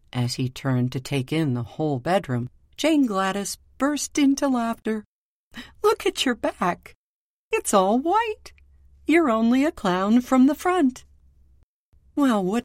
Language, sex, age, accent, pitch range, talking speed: English, female, 50-69, American, 135-220 Hz, 140 wpm